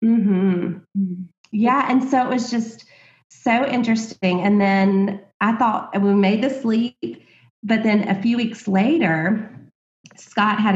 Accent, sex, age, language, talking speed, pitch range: American, female, 30-49, English, 140 wpm, 180-230 Hz